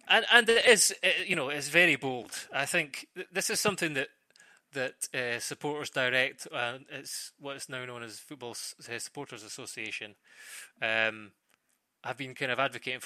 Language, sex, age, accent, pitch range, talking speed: English, male, 20-39, British, 110-140 Hz, 165 wpm